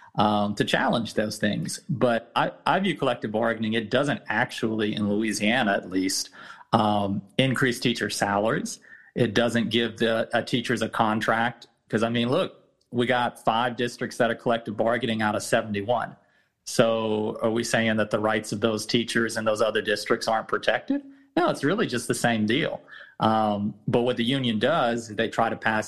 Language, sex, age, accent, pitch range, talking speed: English, male, 40-59, American, 110-120 Hz, 180 wpm